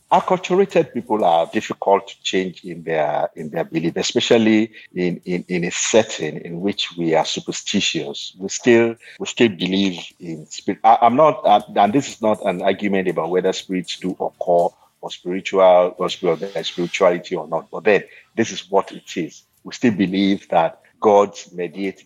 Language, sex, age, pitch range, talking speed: English, male, 50-69, 90-115 Hz, 170 wpm